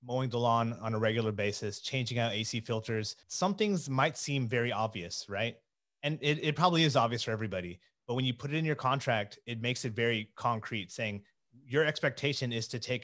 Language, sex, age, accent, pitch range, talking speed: English, male, 30-49, American, 110-130 Hz, 205 wpm